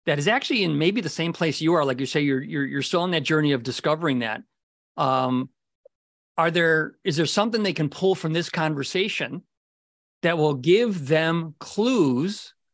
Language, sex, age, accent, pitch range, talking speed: English, male, 50-69, American, 160-205 Hz, 190 wpm